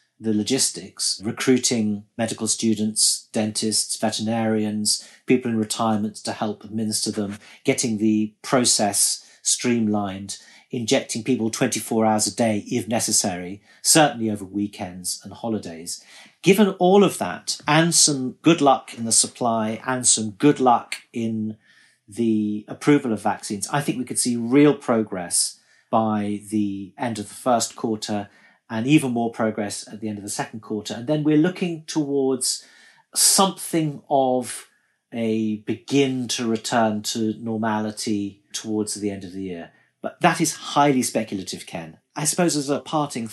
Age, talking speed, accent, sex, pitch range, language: 40-59, 145 wpm, British, male, 105-135 Hz, English